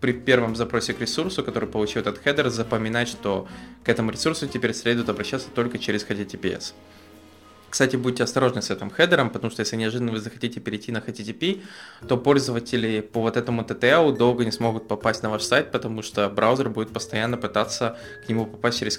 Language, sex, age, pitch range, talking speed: English, male, 20-39, 105-130 Hz, 185 wpm